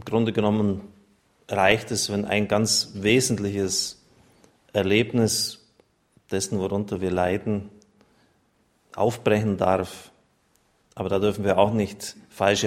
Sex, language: male, German